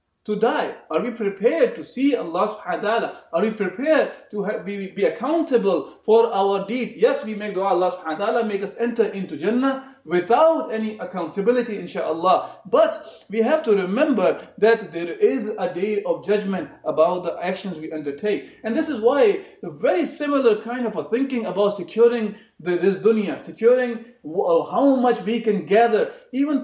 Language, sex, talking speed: English, male, 160 wpm